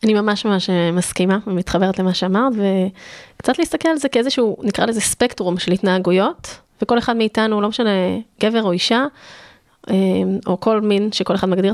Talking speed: 160 wpm